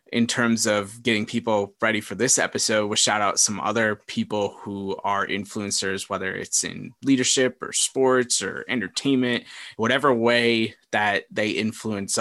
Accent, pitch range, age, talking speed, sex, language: American, 100-115 Hz, 20-39, 150 wpm, male, English